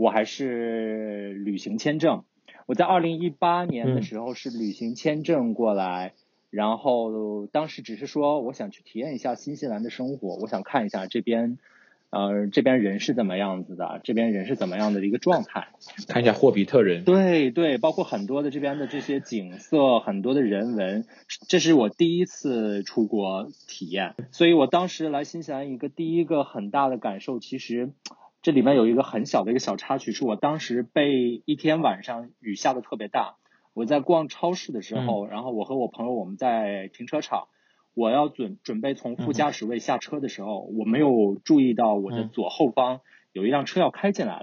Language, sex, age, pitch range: Chinese, male, 20-39, 110-160 Hz